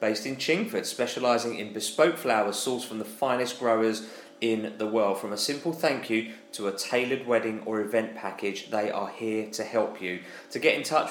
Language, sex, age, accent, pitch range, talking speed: English, male, 20-39, British, 105-130 Hz, 200 wpm